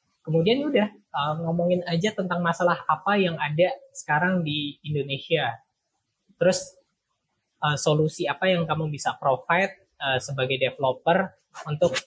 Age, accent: 20-39, native